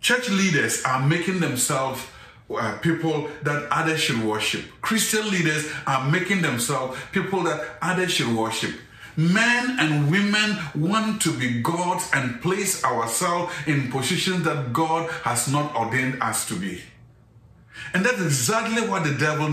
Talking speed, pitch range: 140 wpm, 120-165 Hz